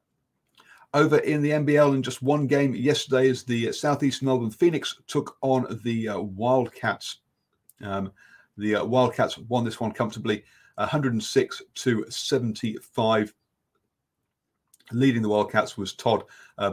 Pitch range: 105-140 Hz